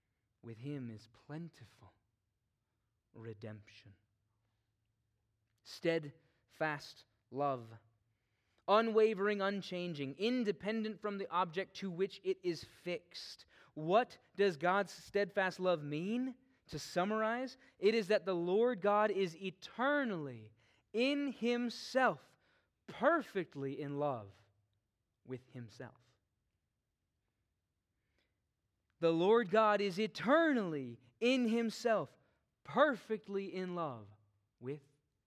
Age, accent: 20-39, American